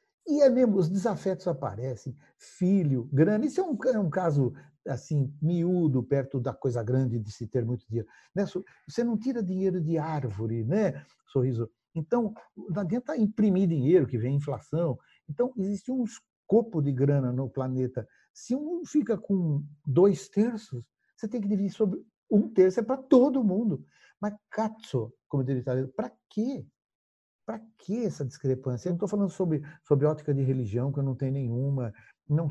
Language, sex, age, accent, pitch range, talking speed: Portuguese, male, 60-79, Brazilian, 130-205 Hz, 170 wpm